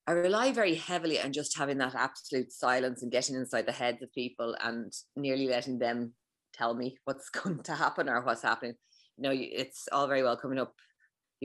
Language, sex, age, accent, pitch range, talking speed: English, female, 30-49, Irish, 115-140 Hz, 205 wpm